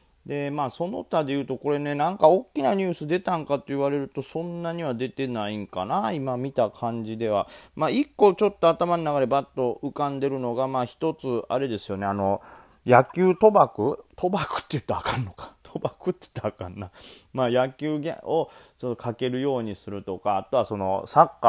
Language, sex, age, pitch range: Japanese, male, 30-49, 105-150 Hz